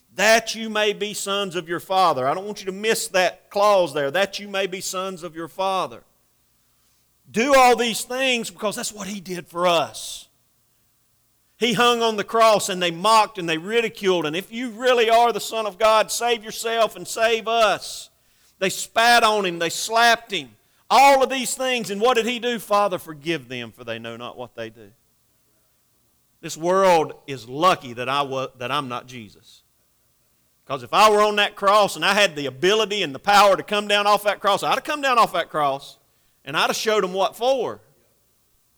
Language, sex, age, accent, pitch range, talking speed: English, male, 40-59, American, 140-215 Hz, 205 wpm